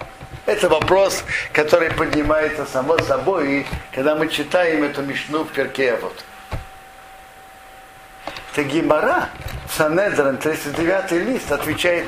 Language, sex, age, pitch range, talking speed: Russian, male, 60-79, 145-235 Hz, 95 wpm